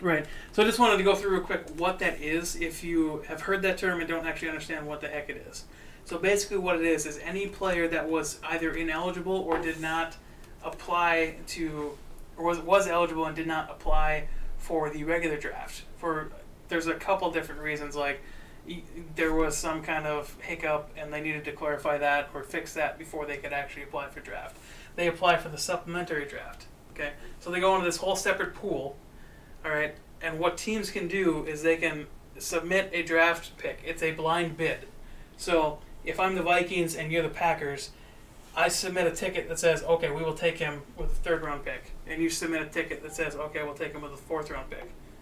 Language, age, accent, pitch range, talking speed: English, 30-49, American, 155-175 Hz, 210 wpm